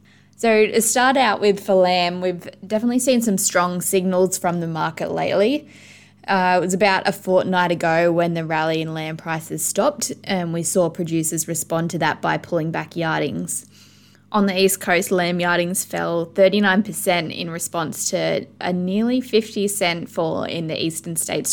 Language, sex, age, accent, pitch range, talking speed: English, female, 20-39, Australian, 160-190 Hz, 175 wpm